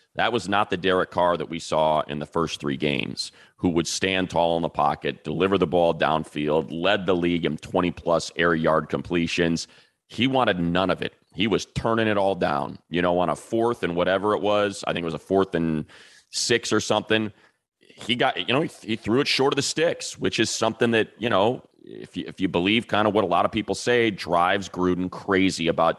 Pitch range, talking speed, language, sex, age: 85-110 Hz, 225 wpm, English, male, 30-49